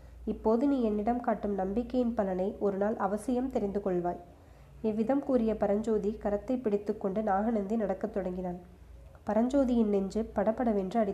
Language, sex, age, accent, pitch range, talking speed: Tamil, female, 20-39, native, 195-225 Hz, 125 wpm